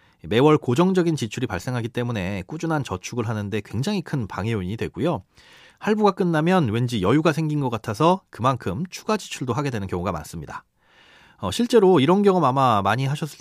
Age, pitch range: 30-49, 110-170 Hz